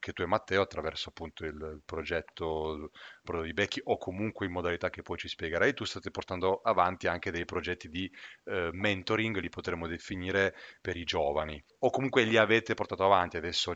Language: Italian